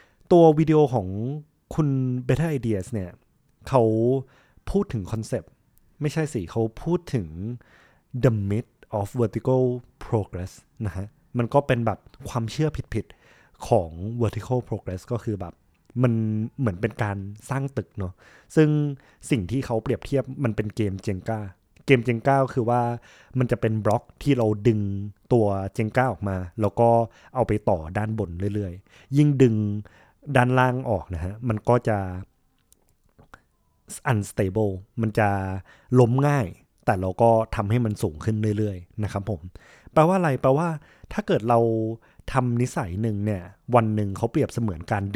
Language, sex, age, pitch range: Thai, male, 20-39, 100-125 Hz